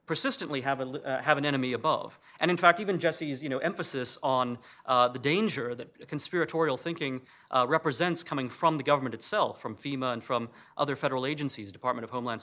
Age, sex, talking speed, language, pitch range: 30-49, male, 195 wpm, English, 130-170 Hz